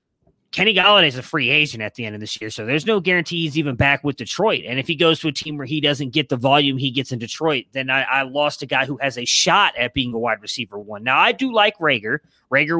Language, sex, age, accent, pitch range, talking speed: English, male, 30-49, American, 135-170 Hz, 280 wpm